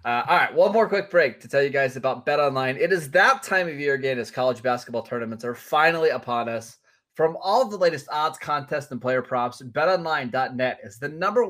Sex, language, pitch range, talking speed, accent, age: male, English, 120-155 Hz, 220 wpm, American, 20-39